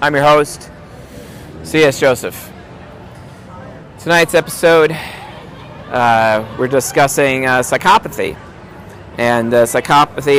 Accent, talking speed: American, 85 wpm